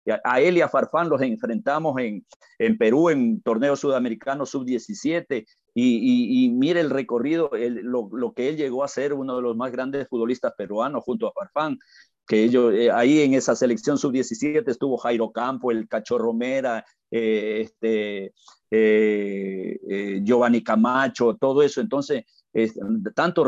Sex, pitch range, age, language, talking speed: male, 120-160 Hz, 50-69, Spanish, 160 wpm